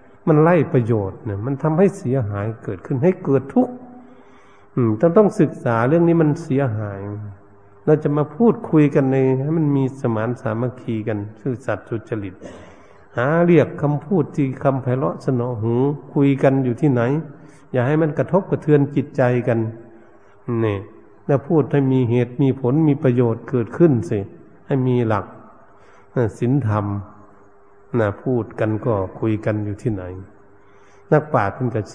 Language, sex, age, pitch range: Thai, male, 60-79, 110-150 Hz